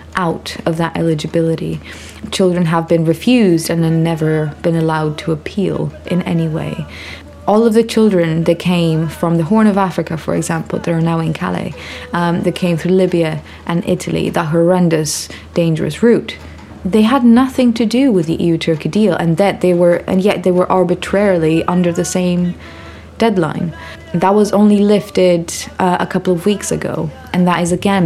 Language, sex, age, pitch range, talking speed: English, female, 20-39, 155-180 Hz, 170 wpm